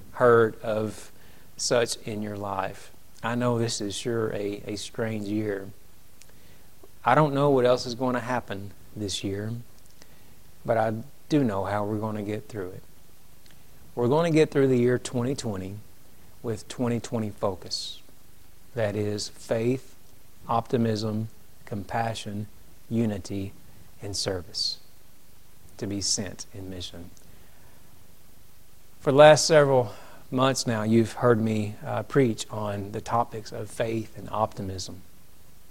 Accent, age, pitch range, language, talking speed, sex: American, 40-59, 100-125 Hz, Bengali, 135 wpm, male